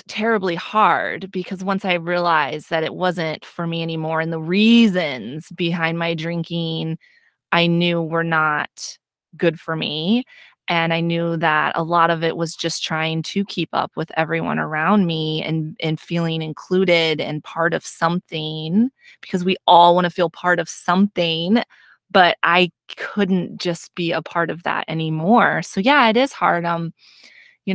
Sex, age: female, 20-39